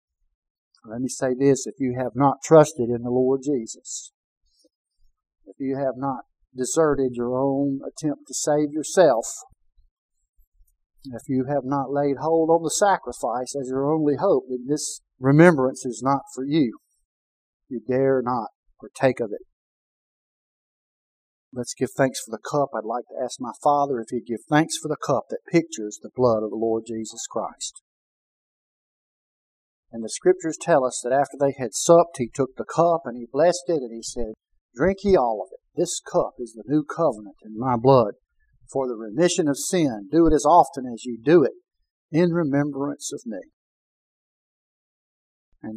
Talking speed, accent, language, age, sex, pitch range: 170 wpm, American, English, 50-69, male, 125-165 Hz